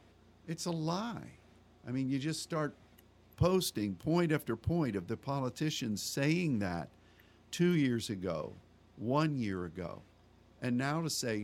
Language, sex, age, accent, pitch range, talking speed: English, male, 50-69, American, 105-145 Hz, 140 wpm